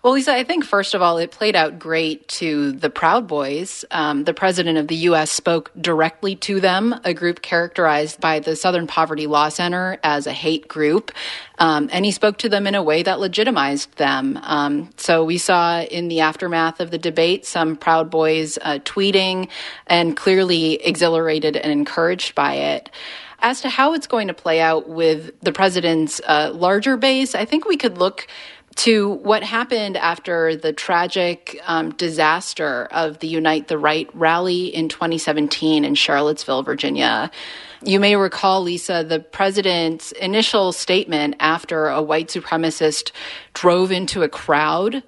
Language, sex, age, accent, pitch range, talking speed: English, female, 30-49, American, 155-190 Hz, 170 wpm